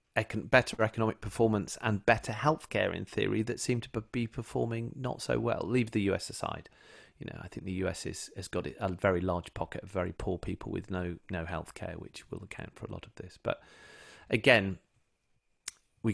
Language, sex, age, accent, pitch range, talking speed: English, male, 30-49, British, 95-115 Hz, 195 wpm